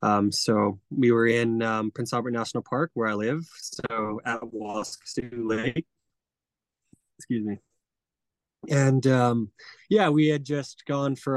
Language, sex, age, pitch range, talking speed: English, male, 20-39, 105-130 Hz, 145 wpm